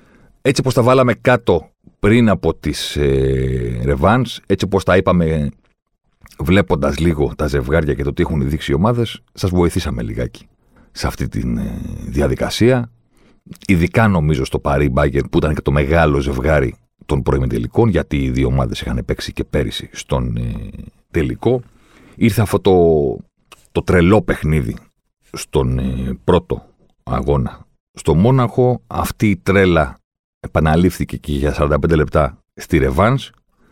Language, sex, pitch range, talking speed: Greek, male, 75-100 Hz, 135 wpm